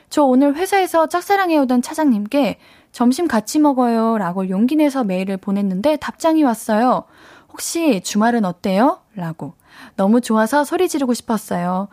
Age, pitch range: 10-29, 200-280 Hz